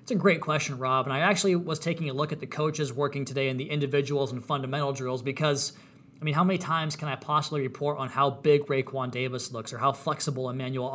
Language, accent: English, American